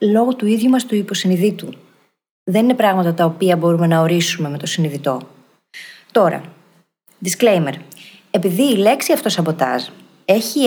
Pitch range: 170-225 Hz